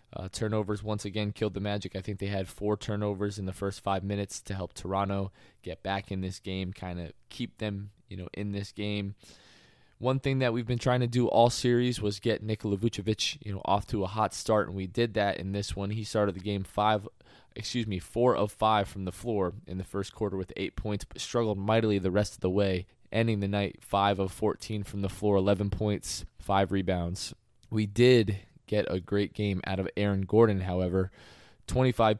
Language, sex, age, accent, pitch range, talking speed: English, male, 20-39, American, 95-110 Hz, 215 wpm